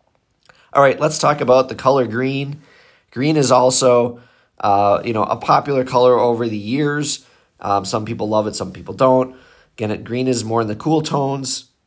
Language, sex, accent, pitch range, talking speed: English, male, American, 100-125 Hz, 180 wpm